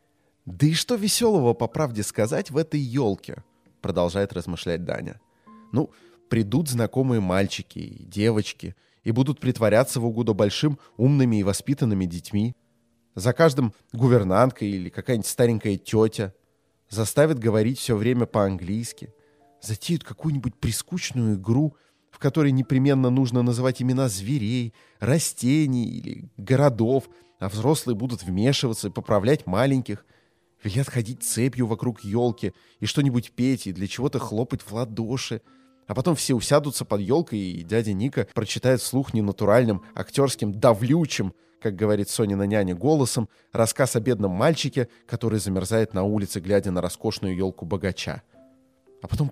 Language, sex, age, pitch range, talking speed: Russian, male, 20-39, 105-135 Hz, 135 wpm